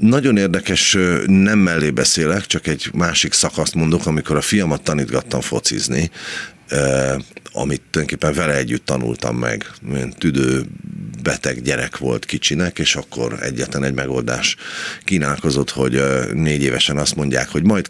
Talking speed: 140 wpm